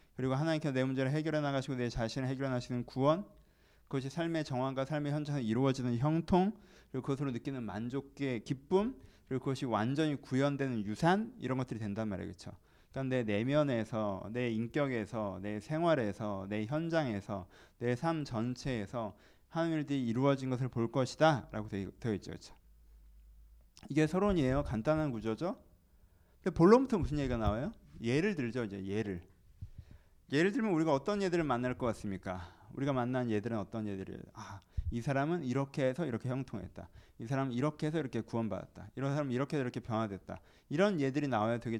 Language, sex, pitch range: Korean, male, 105-155 Hz